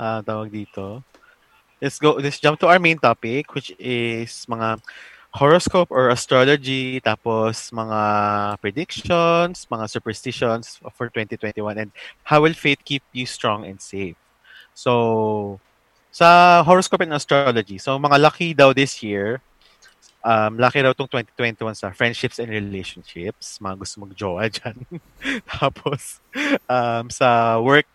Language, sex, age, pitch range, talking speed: English, male, 20-39, 105-130 Hz, 125 wpm